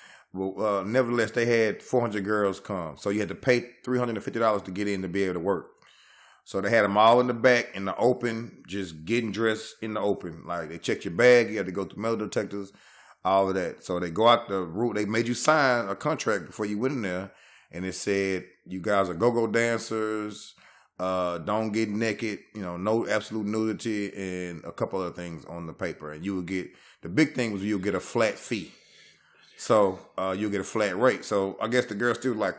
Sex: male